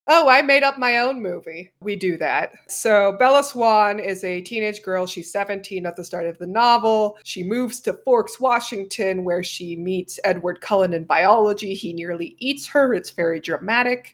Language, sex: English, female